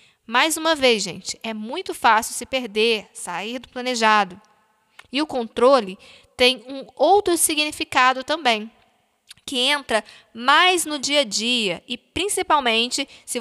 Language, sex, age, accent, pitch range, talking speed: Portuguese, female, 10-29, Brazilian, 225-275 Hz, 135 wpm